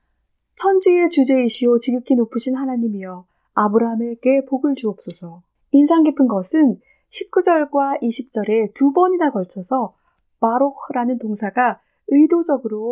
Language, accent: Korean, native